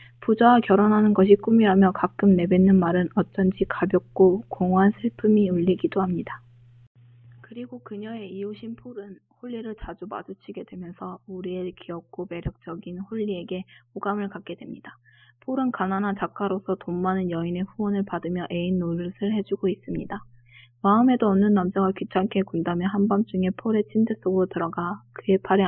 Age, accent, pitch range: 20-39, native, 175-210 Hz